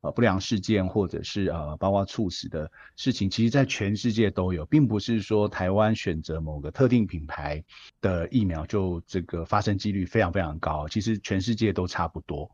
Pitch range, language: 90-115 Hz, Chinese